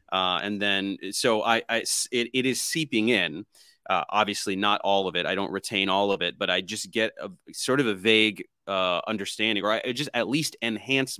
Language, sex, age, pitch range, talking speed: English, male, 30-49, 100-120 Hz, 220 wpm